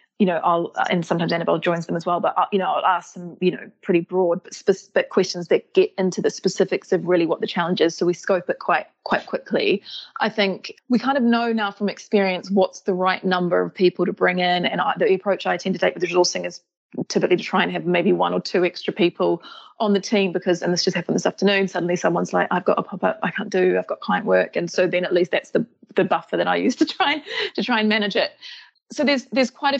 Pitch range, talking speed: 180-210 Hz, 260 wpm